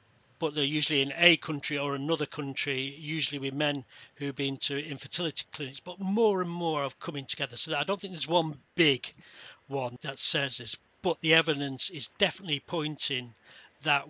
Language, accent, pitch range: English, British, 130-160 Hz